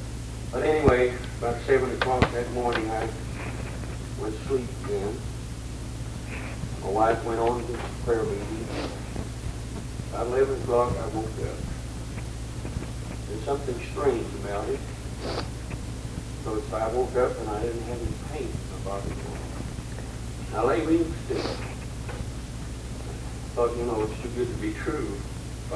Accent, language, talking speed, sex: American, English, 135 wpm, male